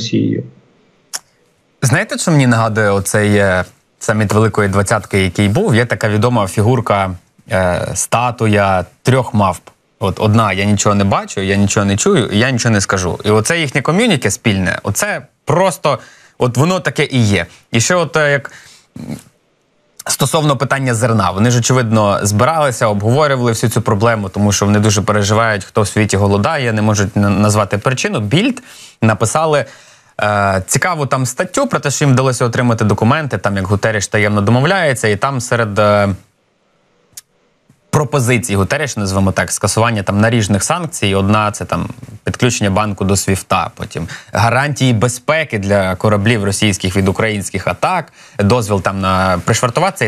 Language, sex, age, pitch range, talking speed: Ukrainian, male, 20-39, 100-130 Hz, 145 wpm